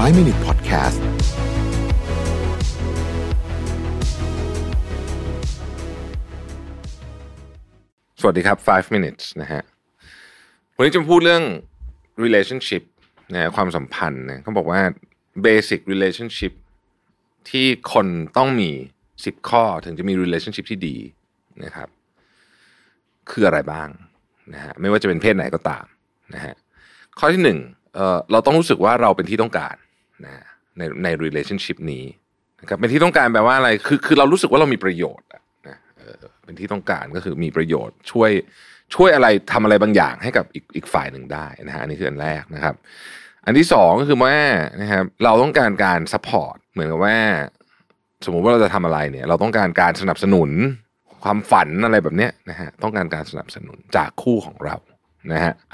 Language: Thai